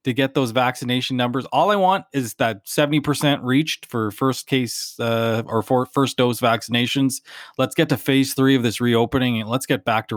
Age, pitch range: 20-39, 105-130 Hz